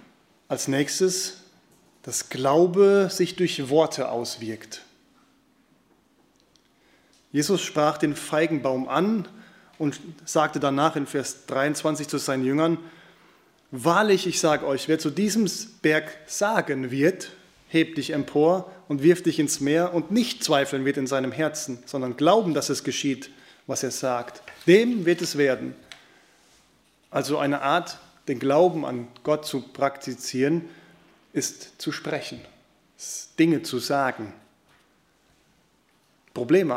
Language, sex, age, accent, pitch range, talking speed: German, male, 30-49, German, 140-180 Hz, 120 wpm